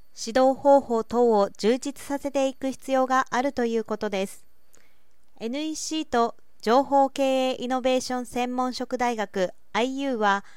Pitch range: 215-270 Hz